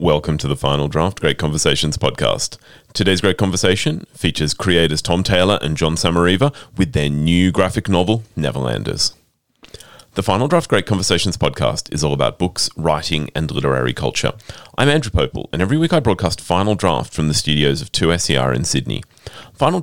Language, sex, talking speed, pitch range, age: English, male, 170 wpm, 80-105 Hz, 30-49